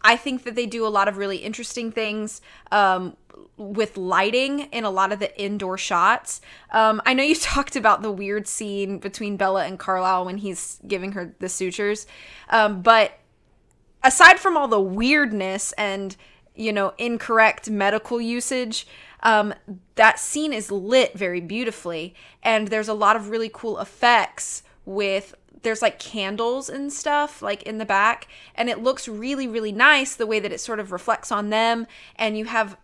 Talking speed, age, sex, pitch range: 175 wpm, 20-39, female, 195-230 Hz